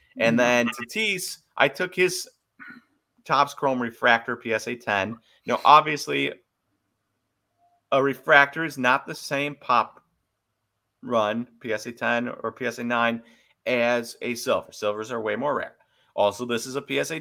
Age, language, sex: 30-49, English, male